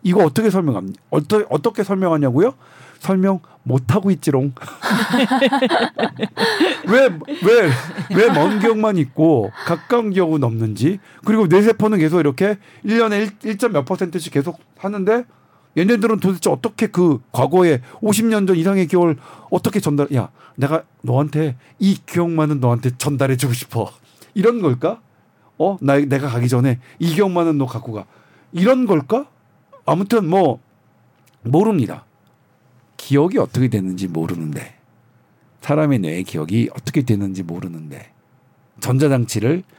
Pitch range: 130-200 Hz